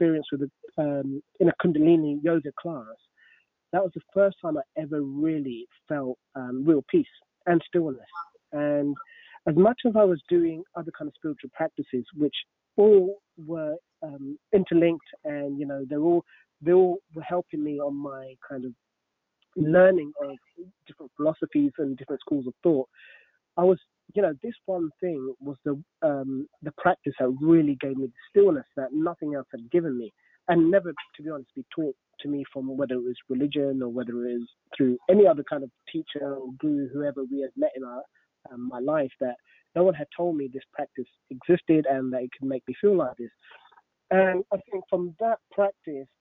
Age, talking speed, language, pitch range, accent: 30-49, 185 wpm, English, 140-180 Hz, British